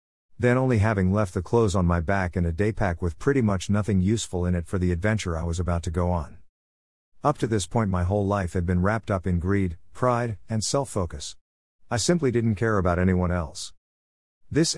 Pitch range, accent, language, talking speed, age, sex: 90-110 Hz, American, English, 210 wpm, 50-69, male